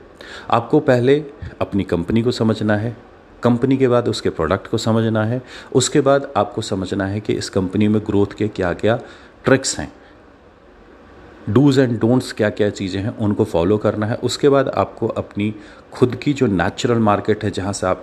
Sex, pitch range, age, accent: male, 95-125 Hz, 40-59, native